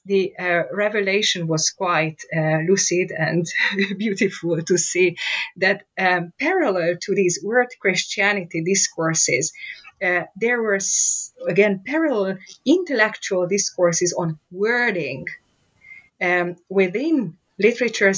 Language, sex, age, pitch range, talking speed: English, female, 30-49, 175-210 Hz, 100 wpm